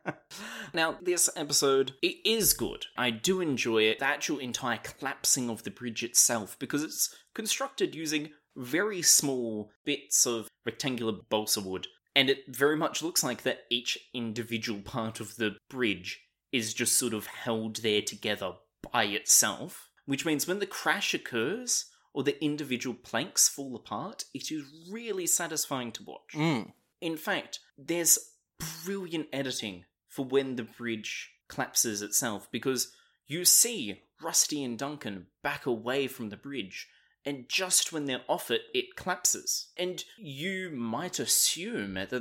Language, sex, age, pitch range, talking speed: English, male, 20-39, 115-155 Hz, 150 wpm